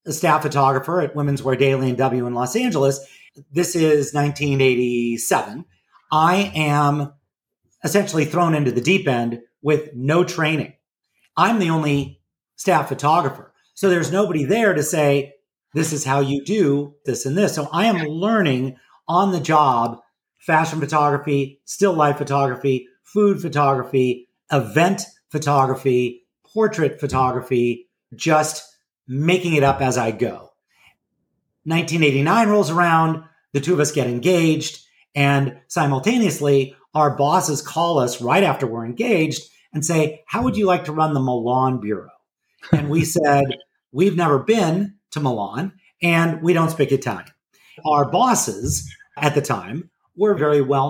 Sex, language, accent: male, English, American